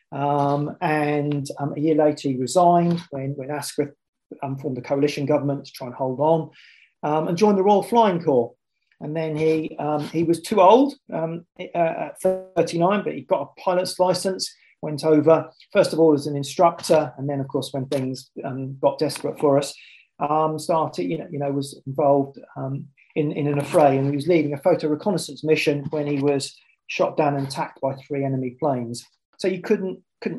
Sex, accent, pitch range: male, British, 140-165 Hz